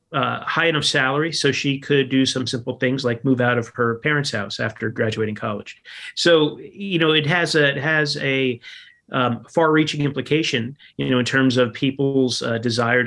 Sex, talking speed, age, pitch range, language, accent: male, 190 wpm, 30-49, 120-145 Hz, English, American